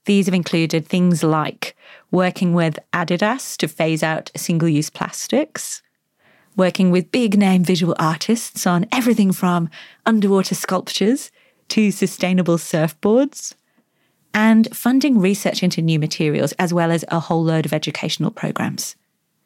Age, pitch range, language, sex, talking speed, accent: 30-49, 165-210 Hz, English, female, 135 wpm, British